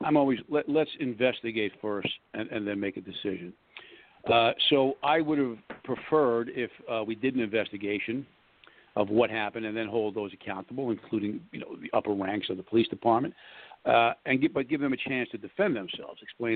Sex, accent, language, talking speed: male, American, English, 195 wpm